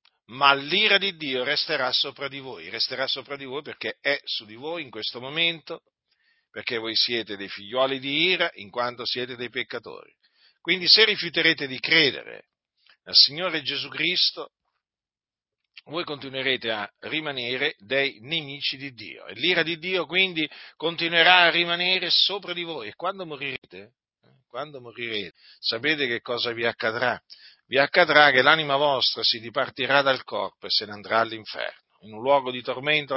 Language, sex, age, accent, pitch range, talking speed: Italian, male, 50-69, native, 125-165 Hz, 160 wpm